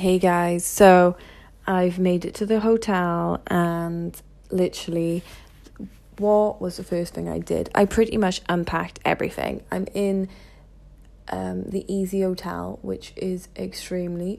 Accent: British